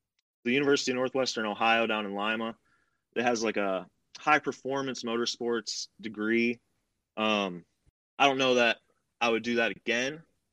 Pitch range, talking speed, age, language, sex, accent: 110-135 Hz, 150 wpm, 20-39, English, male, American